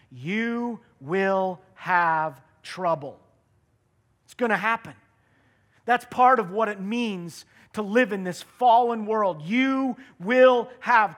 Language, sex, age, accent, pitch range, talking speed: English, male, 40-59, American, 175-230 Hz, 125 wpm